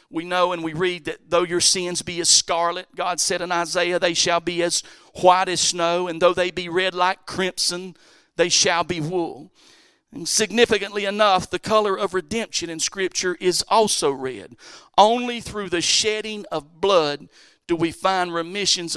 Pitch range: 155-180 Hz